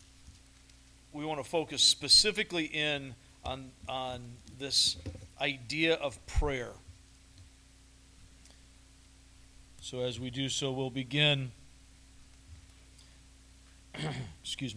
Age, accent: 40-59, American